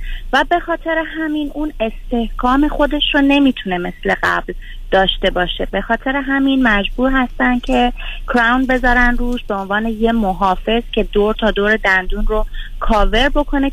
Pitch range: 200-255 Hz